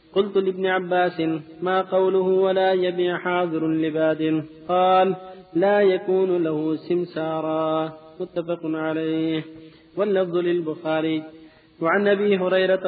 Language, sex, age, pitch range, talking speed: Arabic, male, 50-69, 160-185 Hz, 100 wpm